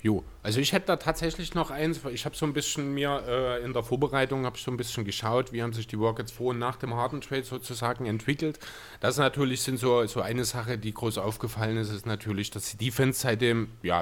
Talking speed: 230 wpm